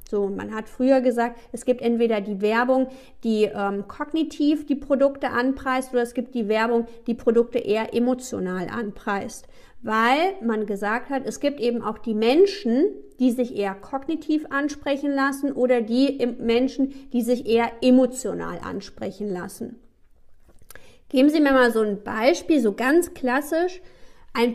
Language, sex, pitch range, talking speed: German, female, 220-265 Hz, 150 wpm